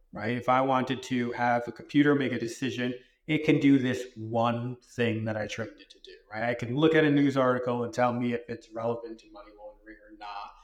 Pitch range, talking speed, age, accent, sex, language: 115-135 Hz, 235 wpm, 30-49, American, male, English